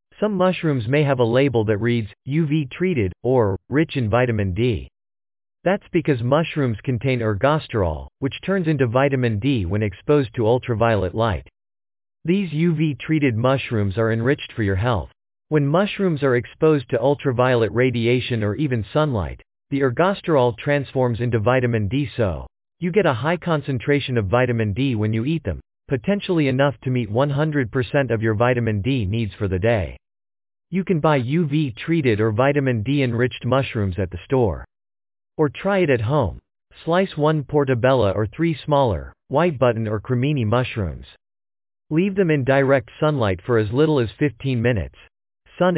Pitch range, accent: 115-150 Hz, American